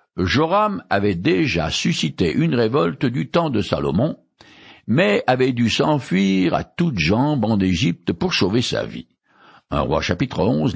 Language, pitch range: French, 110-180 Hz